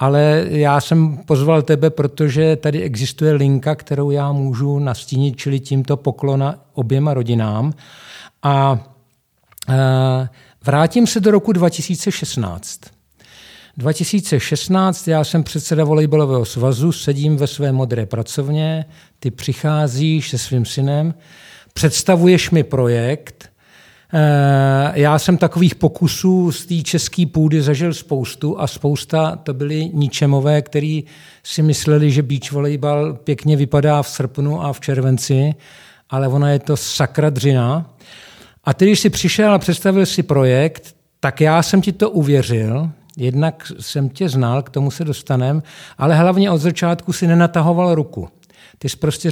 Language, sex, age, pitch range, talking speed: Czech, male, 50-69, 135-160 Hz, 135 wpm